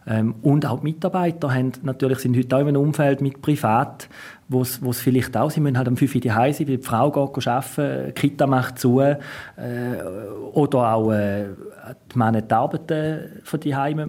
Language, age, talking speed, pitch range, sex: German, 40-59, 190 wpm, 115-140 Hz, male